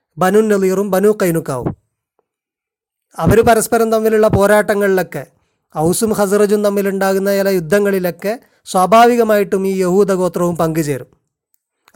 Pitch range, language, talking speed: 175-210 Hz, Malayalam, 85 wpm